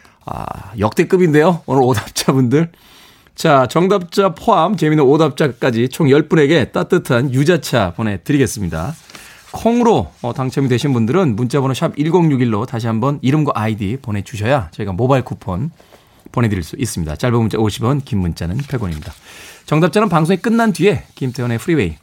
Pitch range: 115-170 Hz